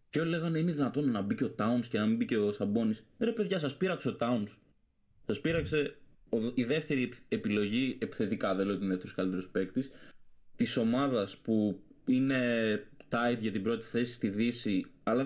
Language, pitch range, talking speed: Greek, 100-140 Hz, 195 wpm